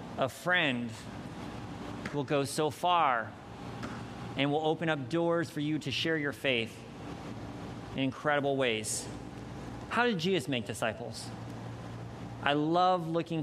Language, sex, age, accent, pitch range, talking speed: English, male, 40-59, American, 140-195 Hz, 125 wpm